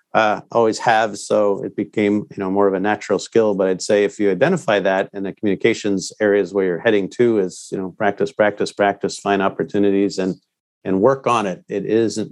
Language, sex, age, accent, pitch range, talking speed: English, male, 50-69, American, 95-110 Hz, 210 wpm